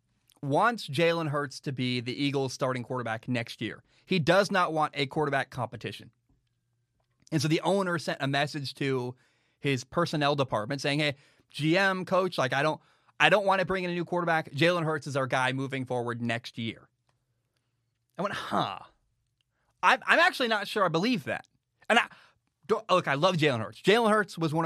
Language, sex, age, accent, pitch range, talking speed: English, male, 20-39, American, 125-175 Hz, 185 wpm